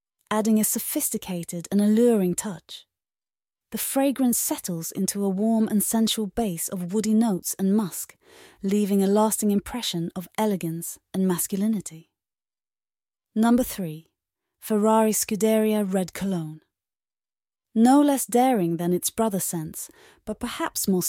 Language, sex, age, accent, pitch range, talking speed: English, female, 30-49, British, 185-230 Hz, 125 wpm